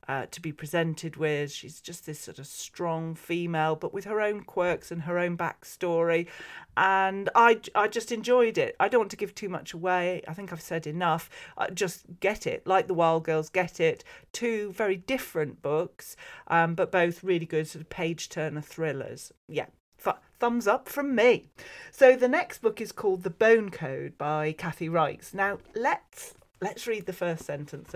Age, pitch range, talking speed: 40-59, 165-225 Hz, 190 wpm